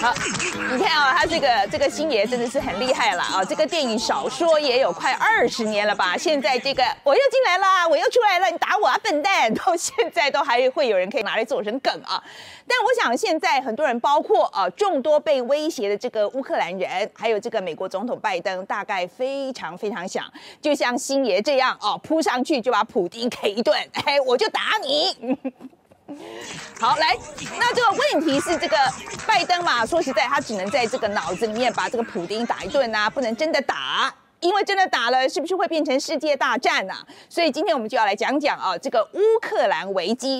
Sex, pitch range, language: female, 235-335 Hz, Chinese